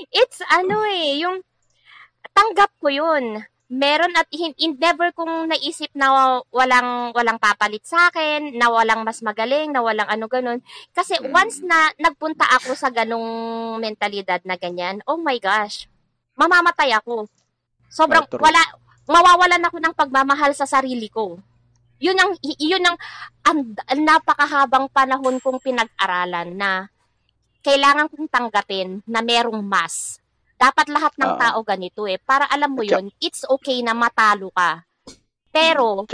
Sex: female